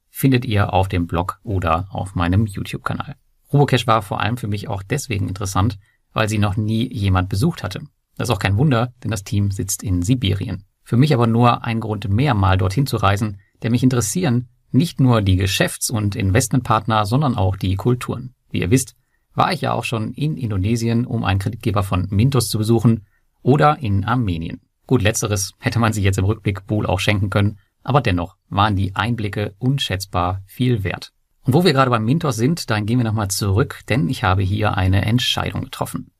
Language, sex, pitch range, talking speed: German, male, 100-125 Hz, 195 wpm